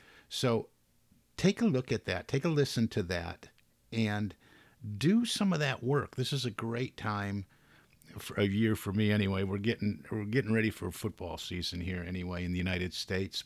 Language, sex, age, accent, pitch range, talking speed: English, male, 50-69, American, 90-110 Hz, 185 wpm